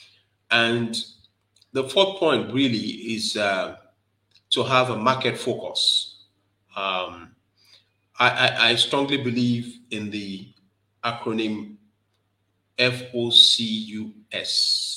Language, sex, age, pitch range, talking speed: English, male, 30-49, 100-120 Hz, 90 wpm